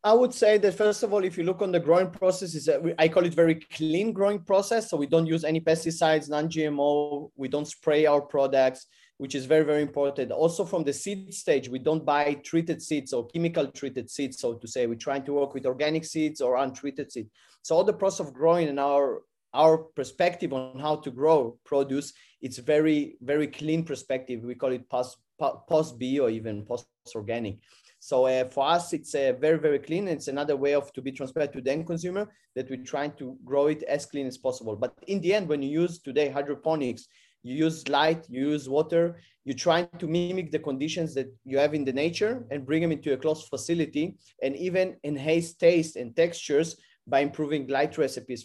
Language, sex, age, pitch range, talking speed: English, male, 30-49, 135-165 Hz, 210 wpm